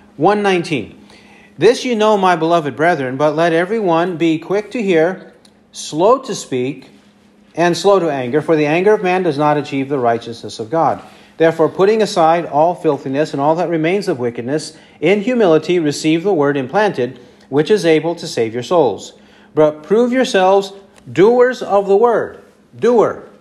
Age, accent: 40-59, American